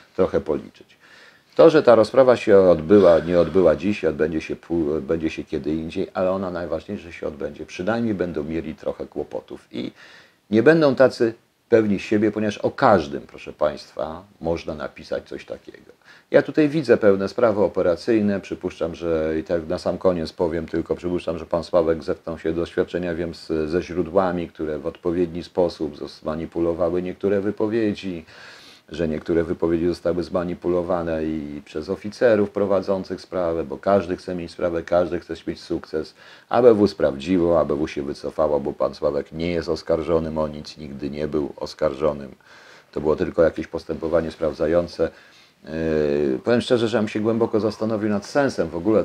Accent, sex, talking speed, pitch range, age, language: native, male, 160 wpm, 80-100 Hz, 50-69, Polish